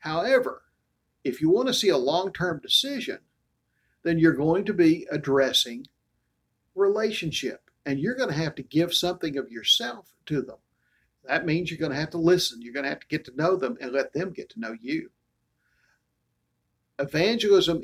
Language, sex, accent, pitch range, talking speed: English, male, American, 125-175 Hz, 180 wpm